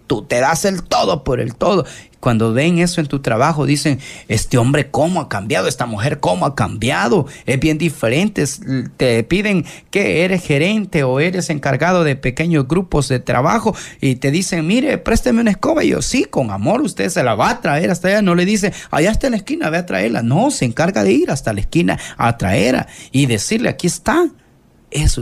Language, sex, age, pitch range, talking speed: Spanish, male, 30-49, 130-185 Hz, 205 wpm